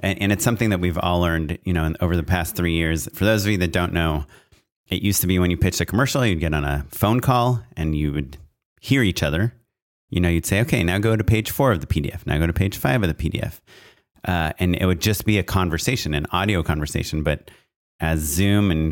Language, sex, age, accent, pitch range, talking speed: English, male, 30-49, American, 85-100 Hz, 245 wpm